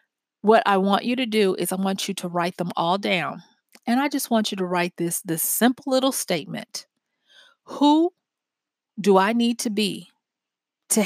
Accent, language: American, English